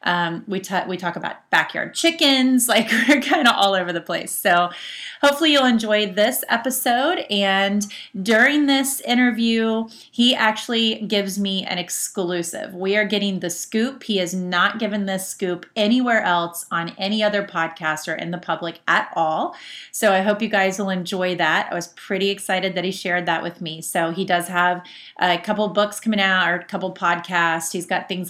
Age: 30-49